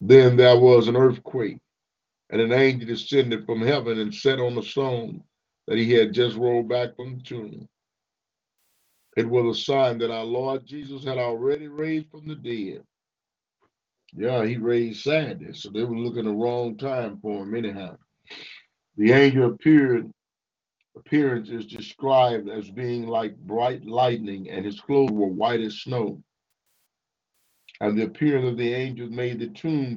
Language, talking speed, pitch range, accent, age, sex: English, 160 wpm, 115-140 Hz, American, 50-69, male